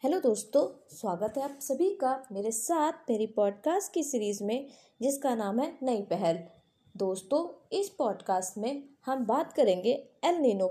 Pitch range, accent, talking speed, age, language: 200-295 Hz, native, 155 wpm, 20-39, Hindi